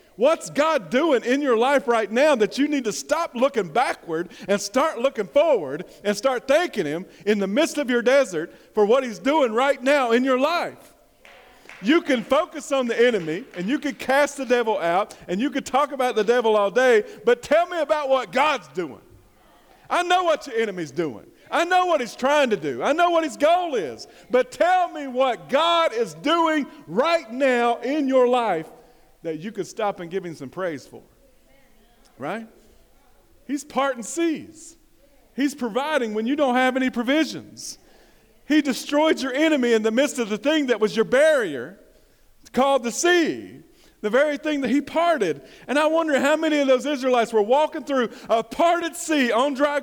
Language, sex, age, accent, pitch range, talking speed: English, male, 50-69, American, 240-310 Hz, 190 wpm